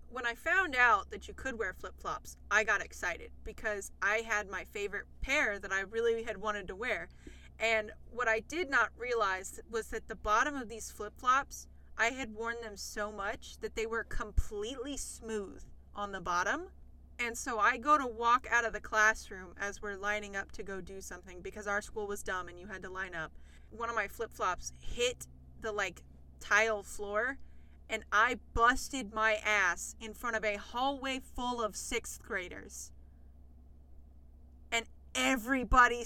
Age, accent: 20-39, American